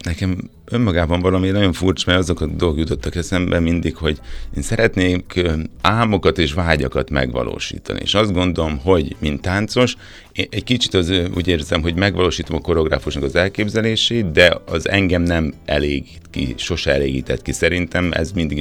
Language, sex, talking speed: Hungarian, male, 155 wpm